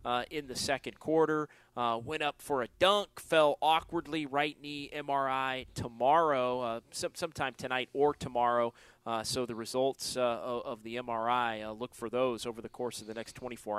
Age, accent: 30-49, American